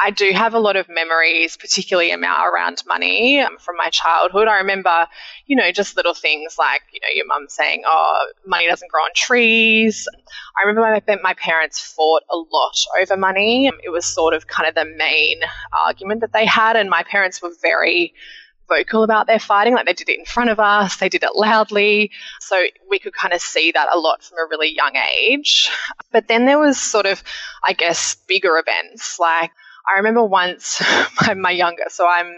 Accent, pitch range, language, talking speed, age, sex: Australian, 170-220 Hz, English, 205 wpm, 20-39, female